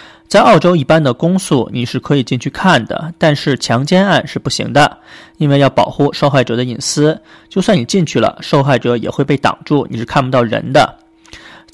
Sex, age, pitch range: male, 30-49, 125-170 Hz